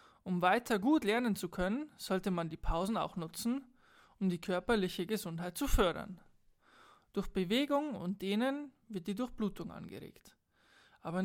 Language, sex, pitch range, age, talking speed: German, male, 185-235 Hz, 20-39, 145 wpm